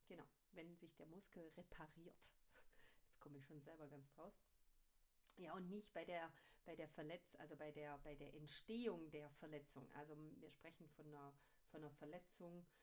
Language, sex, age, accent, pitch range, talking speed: German, female, 40-59, German, 150-175 Hz, 175 wpm